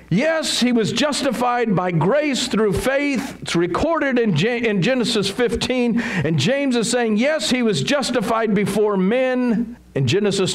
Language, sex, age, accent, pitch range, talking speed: English, male, 50-69, American, 180-235 Hz, 155 wpm